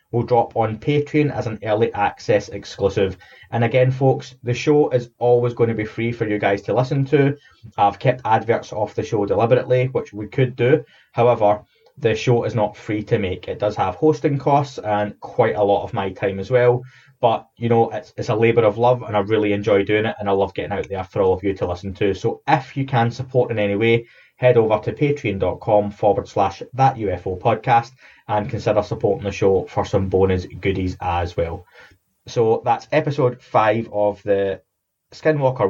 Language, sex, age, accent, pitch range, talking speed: English, male, 20-39, British, 105-130 Hz, 205 wpm